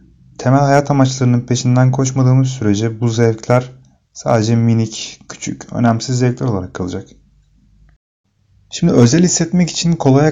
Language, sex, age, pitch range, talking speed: Turkish, male, 30-49, 110-135 Hz, 115 wpm